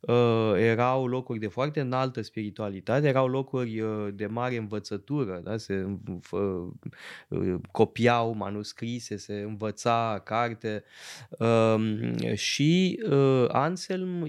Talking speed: 75 wpm